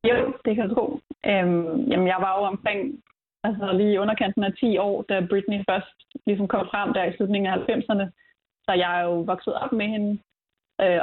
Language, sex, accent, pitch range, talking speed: Danish, female, native, 185-220 Hz, 200 wpm